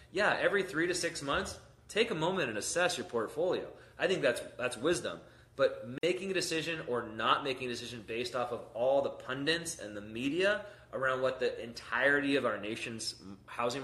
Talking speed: 190 wpm